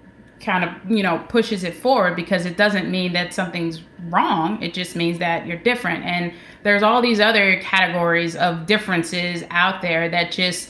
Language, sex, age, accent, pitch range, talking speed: English, female, 20-39, American, 180-215 Hz, 180 wpm